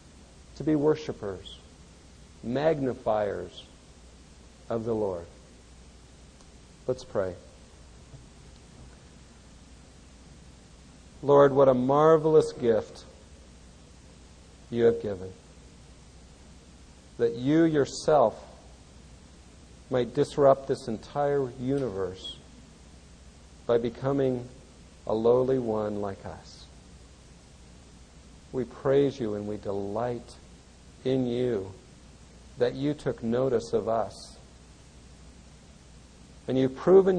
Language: English